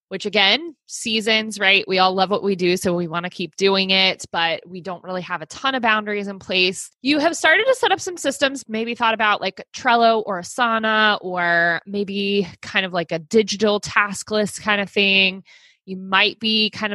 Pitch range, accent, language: 180-225 Hz, American, English